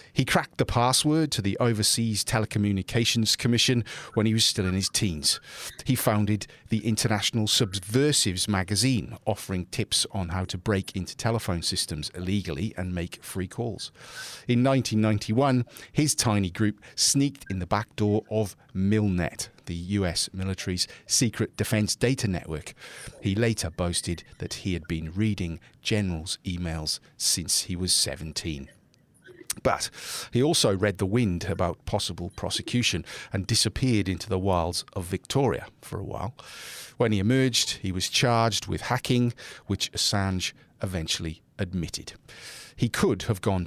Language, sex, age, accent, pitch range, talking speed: English, male, 40-59, British, 90-115 Hz, 145 wpm